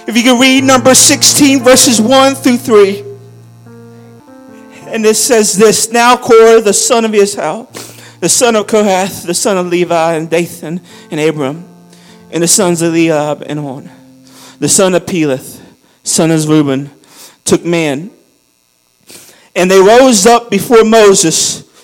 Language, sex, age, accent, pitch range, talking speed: English, male, 40-59, American, 170-230 Hz, 150 wpm